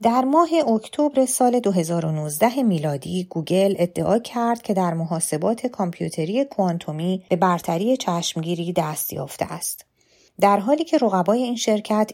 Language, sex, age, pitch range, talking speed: Persian, female, 30-49, 165-215 Hz, 130 wpm